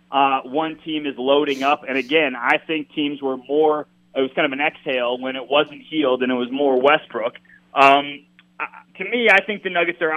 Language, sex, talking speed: English, male, 210 wpm